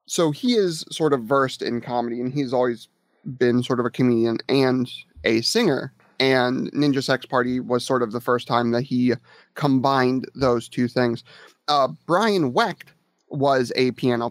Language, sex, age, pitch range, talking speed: English, male, 30-49, 125-160 Hz, 170 wpm